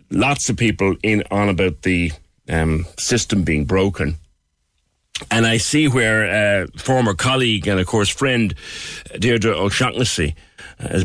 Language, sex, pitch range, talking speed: English, male, 85-105 Hz, 135 wpm